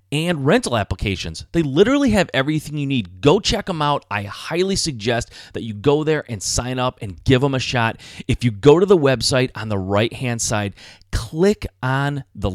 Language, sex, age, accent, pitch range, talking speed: English, male, 30-49, American, 105-145 Hz, 200 wpm